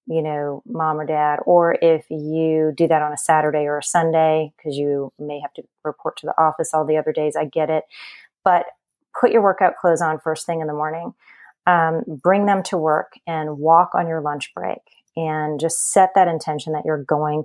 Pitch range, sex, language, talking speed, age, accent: 155-180 Hz, female, English, 215 wpm, 30-49, American